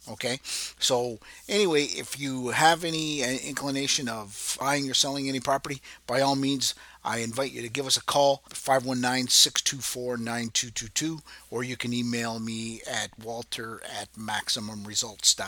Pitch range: 115-140 Hz